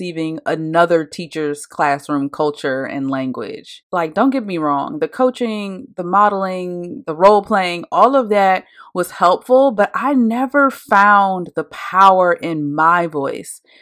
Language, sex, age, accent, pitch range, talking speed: English, female, 30-49, American, 165-215 Hz, 140 wpm